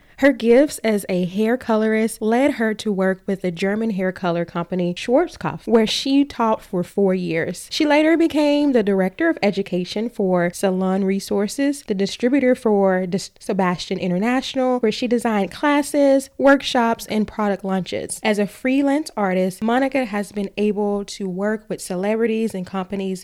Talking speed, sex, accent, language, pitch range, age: 160 wpm, female, American, English, 195-255 Hz, 20-39